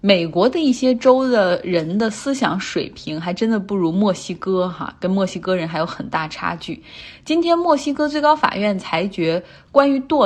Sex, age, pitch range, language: female, 20-39, 180-240 Hz, Chinese